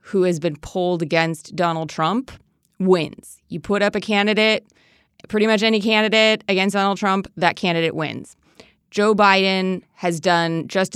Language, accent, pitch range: English, American, 160-205 Hz